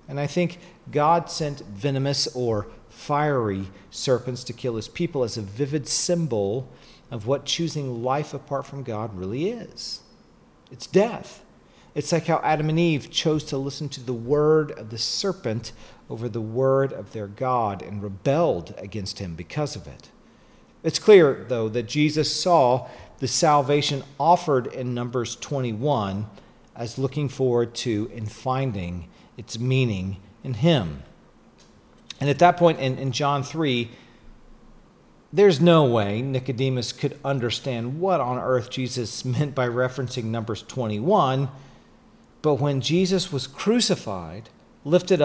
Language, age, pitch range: English, 40-59, 115-150 Hz